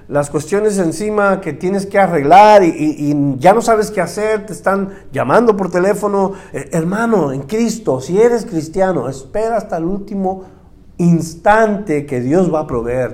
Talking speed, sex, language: 170 wpm, male, Spanish